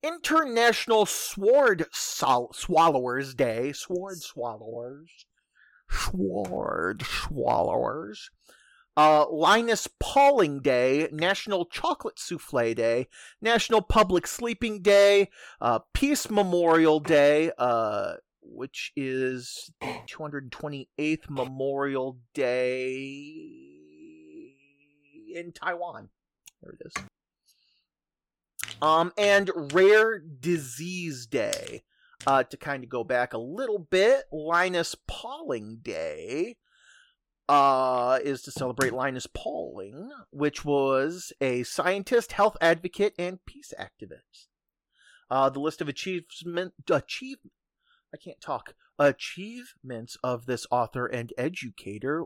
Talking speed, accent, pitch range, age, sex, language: 95 wpm, American, 130-205 Hz, 40-59, male, English